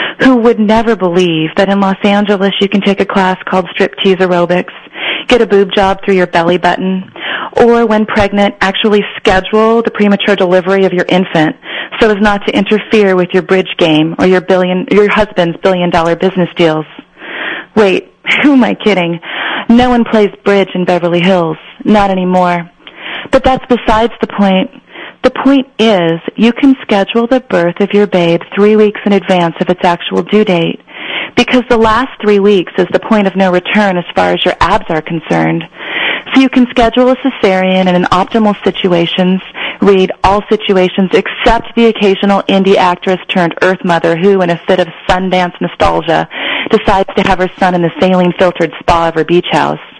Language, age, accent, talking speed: English, 30-49, American, 175 wpm